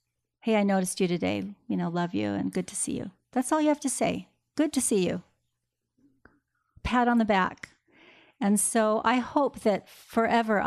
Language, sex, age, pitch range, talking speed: English, female, 50-69, 185-220 Hz, 190 wpm